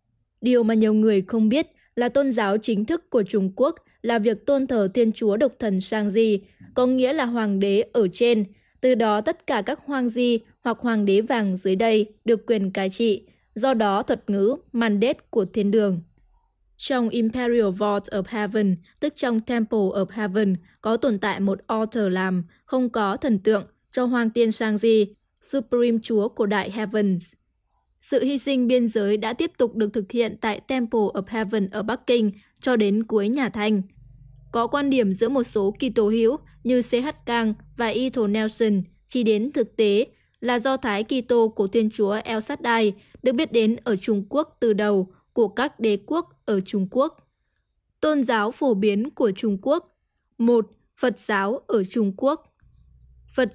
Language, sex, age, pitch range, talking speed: Vietnamese, female, 20-39, 210-245 Hz, 185 wpm